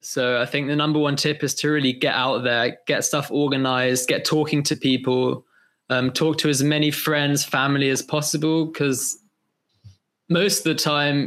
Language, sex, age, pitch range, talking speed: English, male, 20-39, 130-155 Hz, 180 wpm